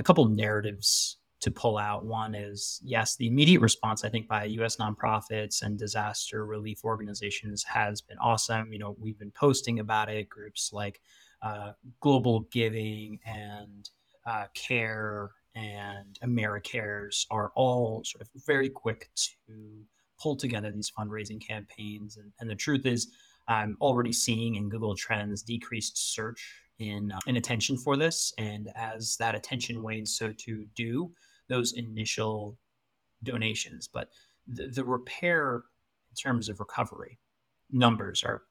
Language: English